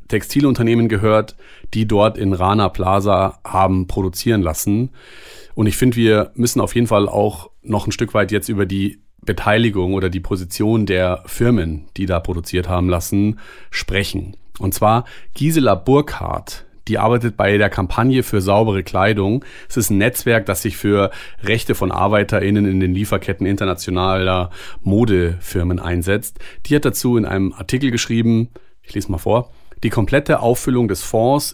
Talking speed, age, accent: 155 wpm, 30-49, German